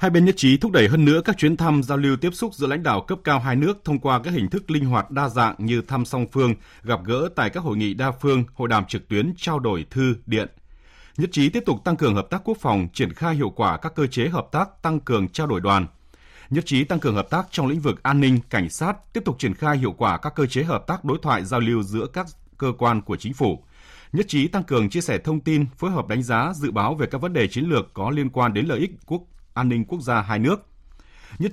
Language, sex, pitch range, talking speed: Vietnamese, male, 105-150 Hz, 275 wpm